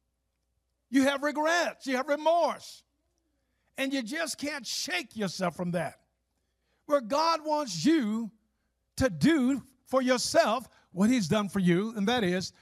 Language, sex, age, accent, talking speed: English, male, 50-69, American, 145 wpm